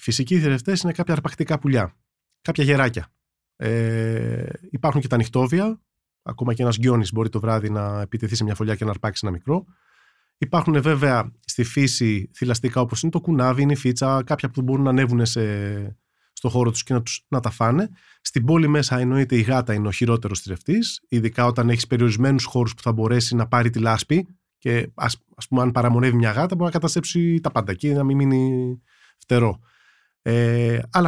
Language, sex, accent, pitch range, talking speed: Greek, male, native, 115-160 Hz, 180 wpm